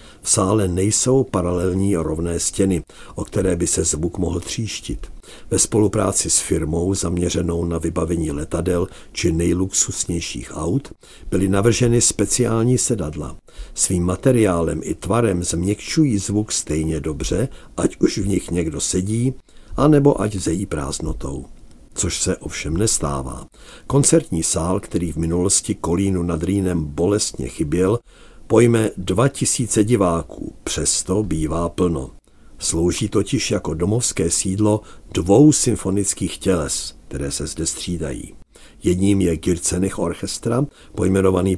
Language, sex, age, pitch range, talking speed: Czech, male, 50-69, 80-105 Hz, 120 wpm